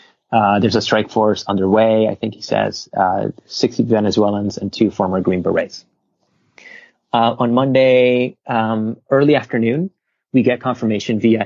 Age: 30-49